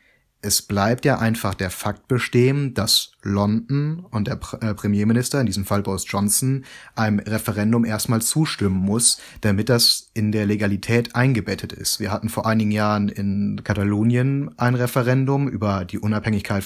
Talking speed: 150 wpm